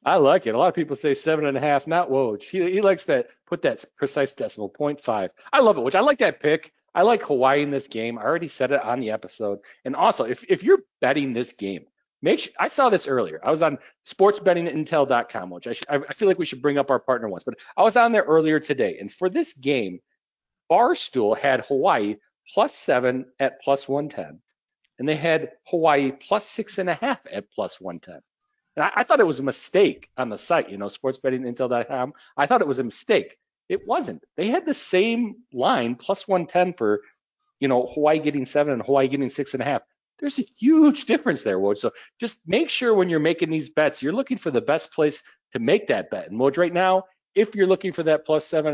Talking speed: 230 wpm